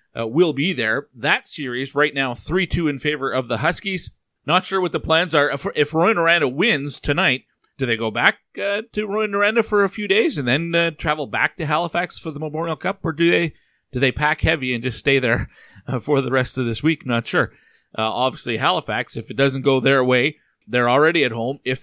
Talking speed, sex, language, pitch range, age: 230 wpm, male, English, 125-160 Hz, 40-59